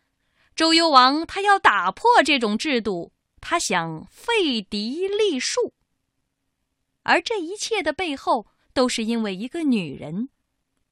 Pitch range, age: 230-370 Hz, 20-39